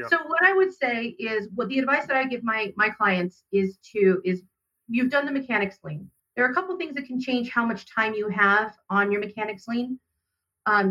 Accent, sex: American, female